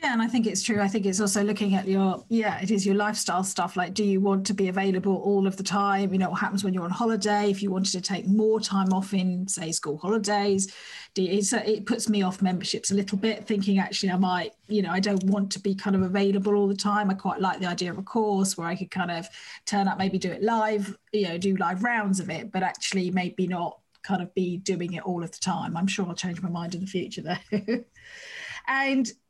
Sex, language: female, English